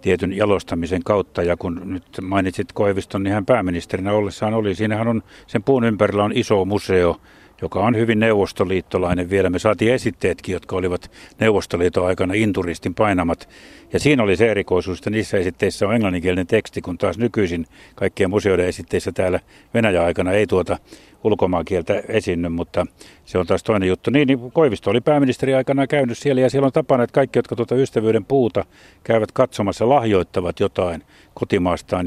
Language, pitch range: Finnish, 95-115 Hz